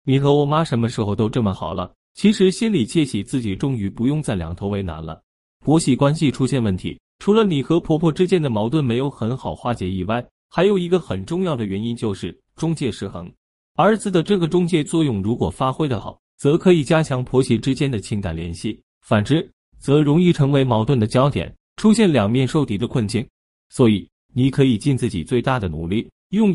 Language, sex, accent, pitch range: Chinese, male, native, 105-160 Hz